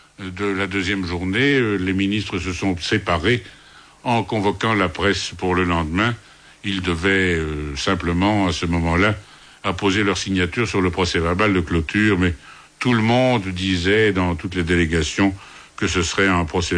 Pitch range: 90-110 Hz